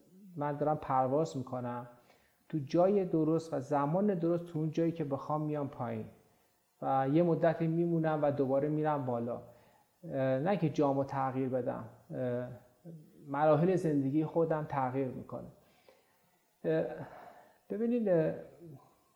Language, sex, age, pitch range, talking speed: Persian, male, 30-49, 140-170 Hz, 115 wpm